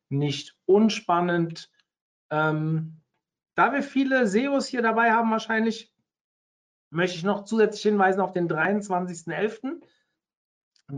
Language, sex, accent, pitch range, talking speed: German, male, German, 170-215 Hz, 105 wpm